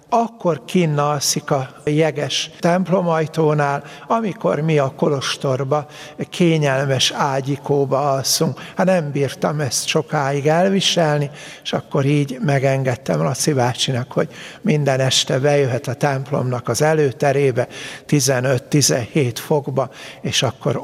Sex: male